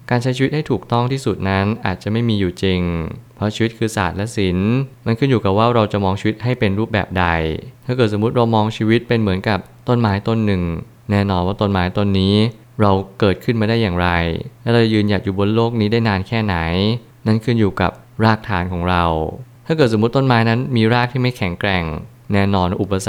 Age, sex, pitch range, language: 20-39, male, 95-115 Hz, Thai